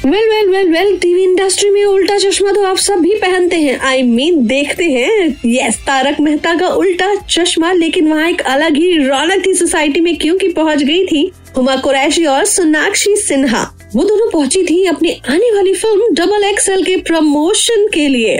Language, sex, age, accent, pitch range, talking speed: Hindi, female, 20-39, native, 290-400 Hz, 190 wpm